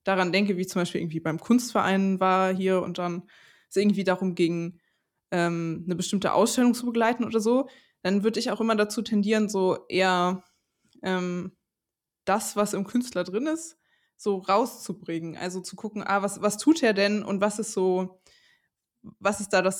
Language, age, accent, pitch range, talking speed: German, 20-39, German, 185-225 Hz, 180 wpm